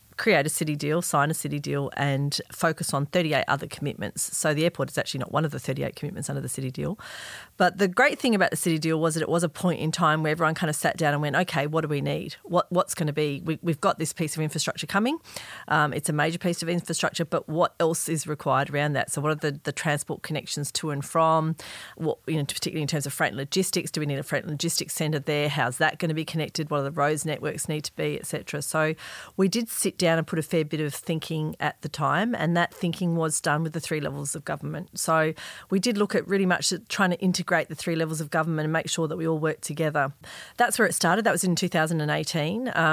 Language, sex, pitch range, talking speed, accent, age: English, female, 150-170 Hz, 260 wpm, Australian, 40-59